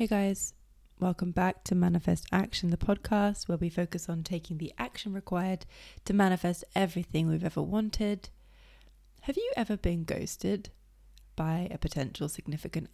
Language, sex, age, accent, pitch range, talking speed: English, female, 30-49, British, 155-195 Hz, 150 wpm